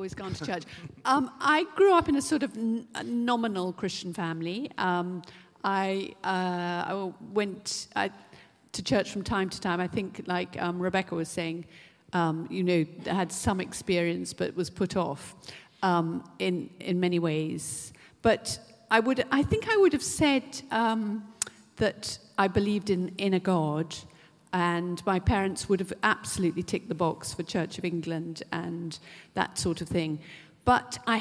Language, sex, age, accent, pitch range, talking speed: English, female, 50-69, British, 165-195 Hz, 170 wpm